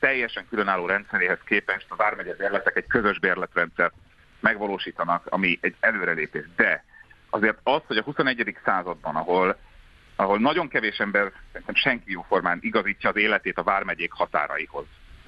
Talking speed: 140 wpm